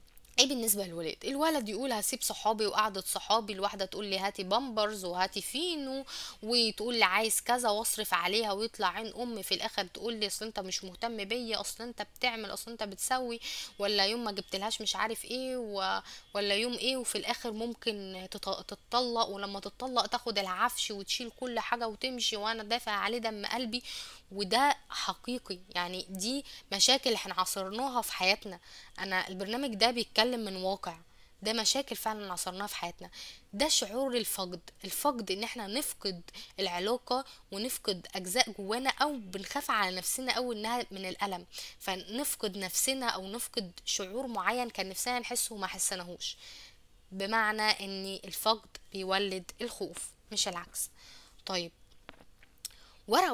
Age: 10-29